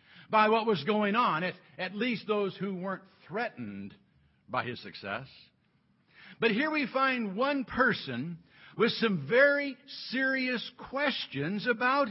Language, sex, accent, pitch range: English, male, American, 175-255 Hz